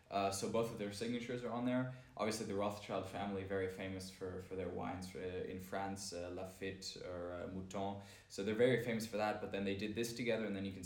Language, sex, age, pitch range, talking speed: Polish, male, 10-29, 95-110 Hz, 230 wpm